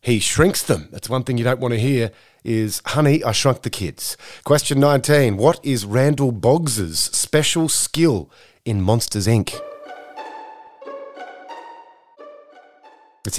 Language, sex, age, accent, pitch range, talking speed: English, male, 30-49, Australian, 110-155 Hz, 130 wpm